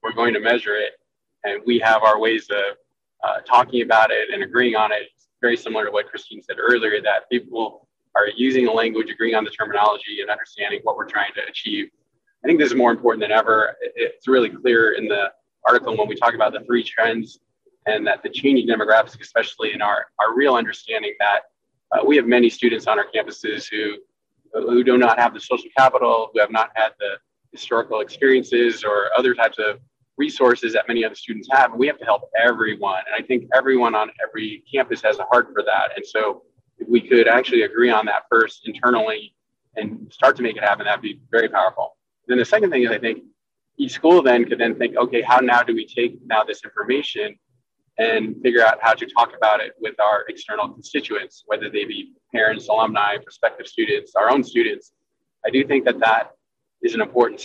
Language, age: English, 20-39